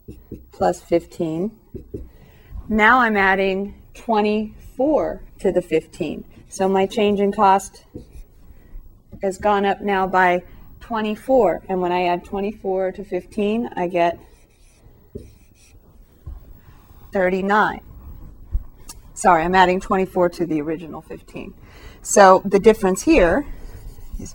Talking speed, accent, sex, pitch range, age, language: 105 wpm, American, female, 175-210 Hz, 30-49, English